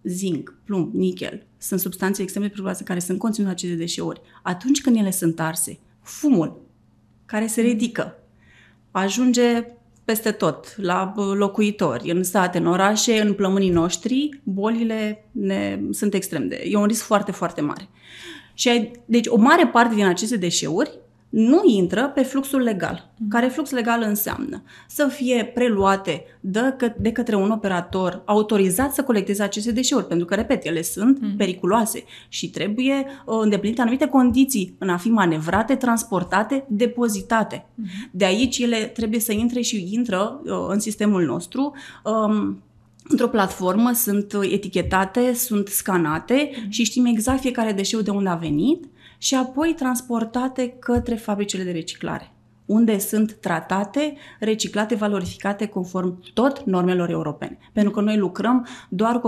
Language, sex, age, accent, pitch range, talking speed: Romanian, female, 30-49, native, 185-240 Hz, 140 wpm